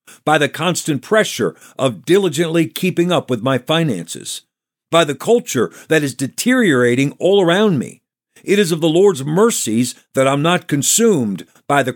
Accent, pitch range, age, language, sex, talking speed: American, 125-180 Hz, 50-69, English, male, 165 wpm